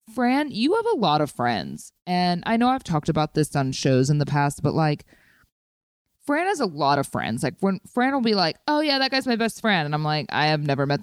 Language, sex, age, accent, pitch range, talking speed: English, female, 20-39, American, 135-180 Hz, 255 wpm